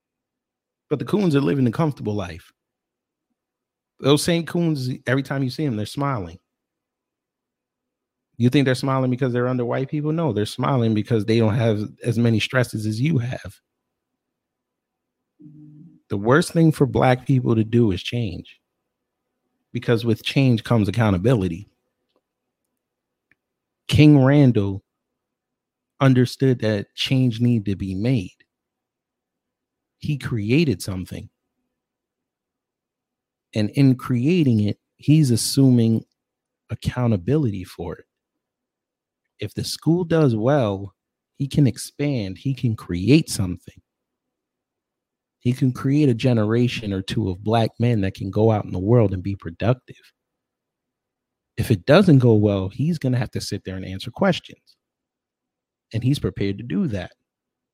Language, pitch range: English, 105-140 Hz